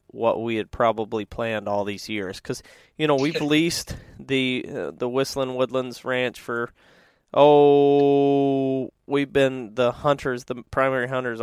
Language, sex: English, male